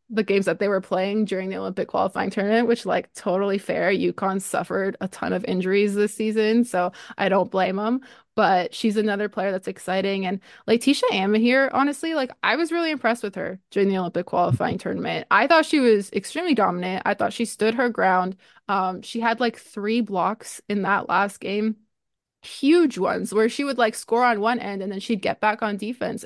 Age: 20-39